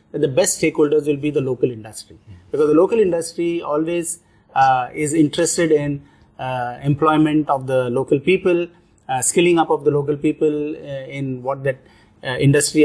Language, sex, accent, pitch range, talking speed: English, male, Indian, 125-155 Hz, 175 wpm